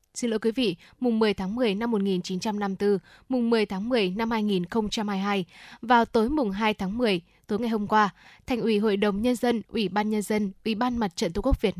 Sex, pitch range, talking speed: female, 200-245 Hz, 220 wpm